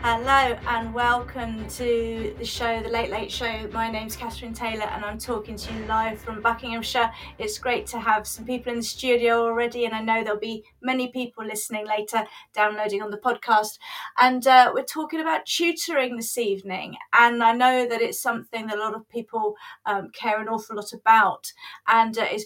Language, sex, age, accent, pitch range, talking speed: English, female, 30-49, British, 215-270 Hz, 195 wpm